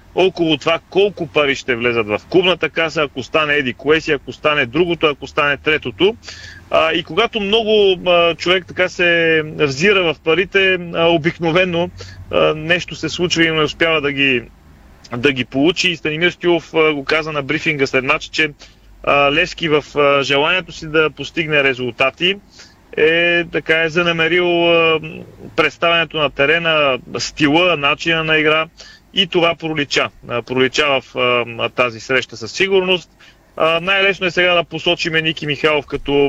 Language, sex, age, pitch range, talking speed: Bulgarian, male, 30-49, 140-170 Hz, 150 wpm